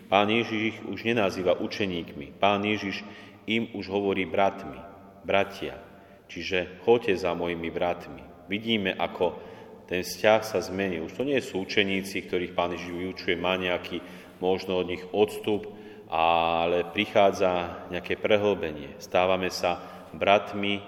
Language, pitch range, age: Slovak, 90-100 Hz, 40-59